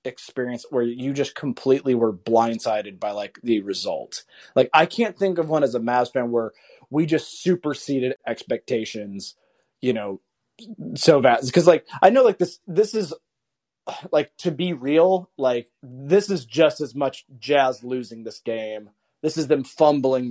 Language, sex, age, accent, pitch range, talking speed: English, male, 30-49, American, 120-160 Hz, 165 wpm